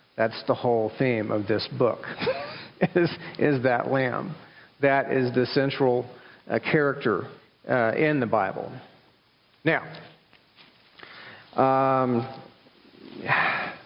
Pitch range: 120-150 Hz